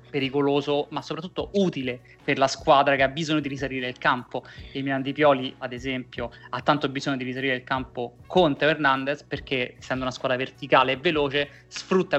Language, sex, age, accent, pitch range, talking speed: Italian, male, 20-39, native, 135-155 Hz, 180 wpm